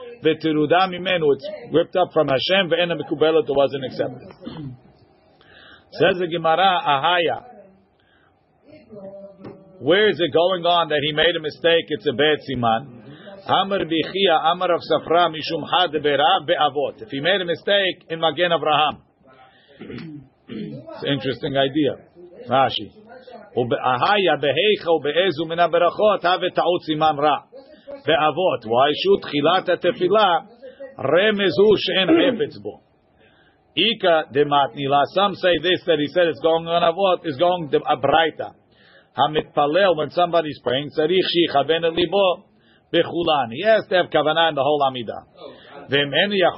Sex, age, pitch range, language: male, 50-69, 150-185 Hz, English